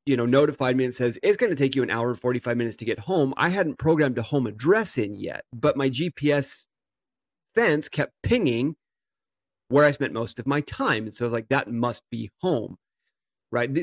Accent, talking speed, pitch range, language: American, 220 wpm, 120-145 Hz, English